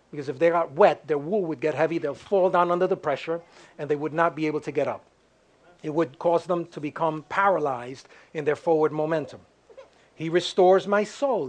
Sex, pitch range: male, 165-215 Hz